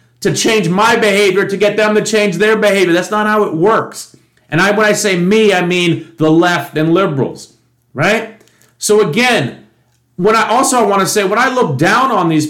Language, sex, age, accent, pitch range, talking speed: English, male, 40-59, American, 155-215 Hz, 200 wpm